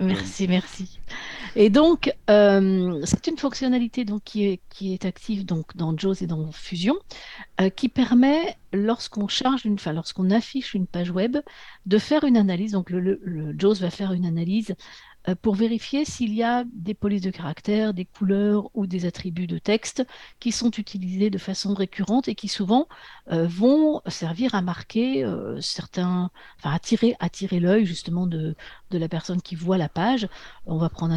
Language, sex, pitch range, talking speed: French, female, 180-225 Hz, 185 wpm